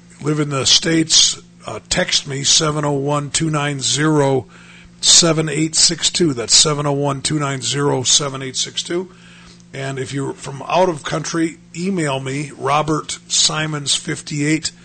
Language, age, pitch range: English, 50-69, 130-155 Hz